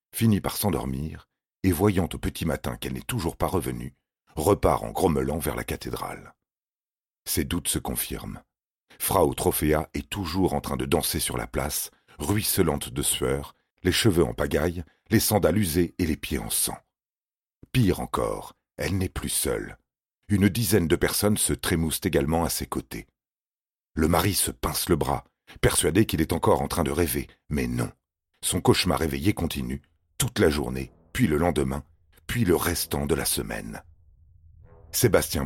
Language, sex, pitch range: French, male, 75-95 Hz